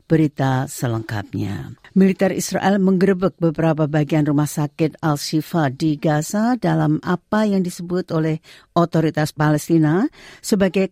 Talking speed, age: 110 wpm, 50-69